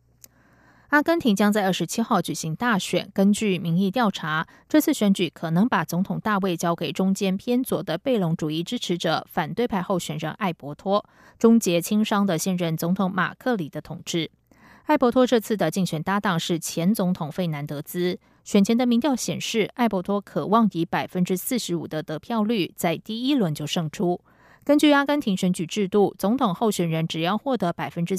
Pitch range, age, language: 170-225 Hz, 20-39, German